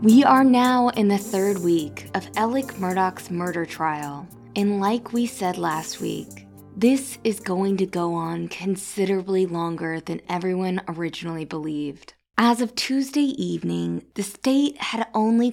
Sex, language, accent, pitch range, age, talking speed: female, English, American, 170-220 Hz, 20-39, 145 wpm